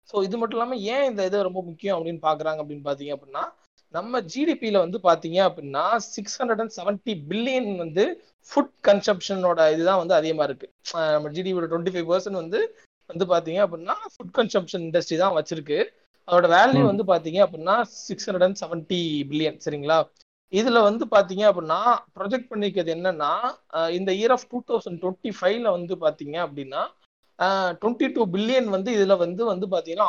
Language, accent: Tamil, native